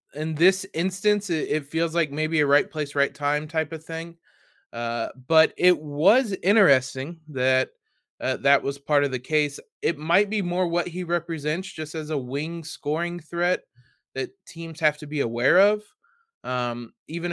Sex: male